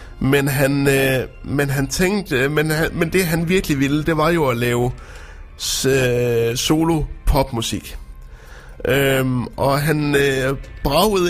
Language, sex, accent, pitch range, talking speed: Danish, male, native, 130-160 Hz, 135 wpm